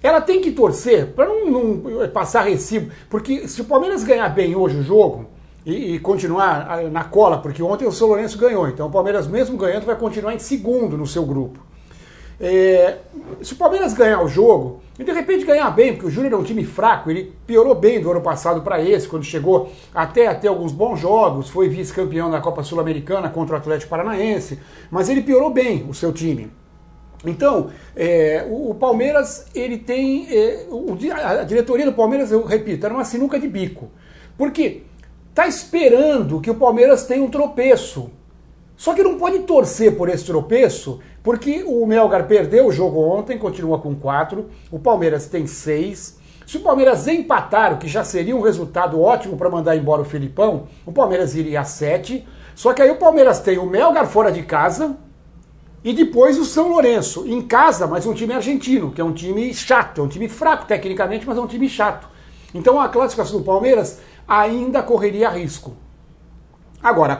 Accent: Brazilian